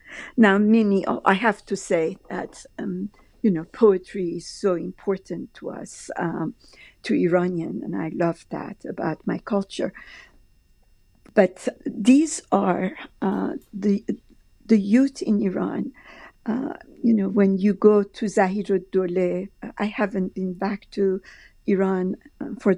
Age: 50-69